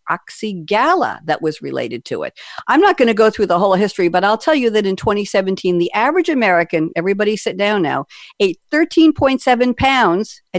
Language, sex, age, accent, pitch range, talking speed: English, female, 50-69, American, 165-230 Hz, 185 wpm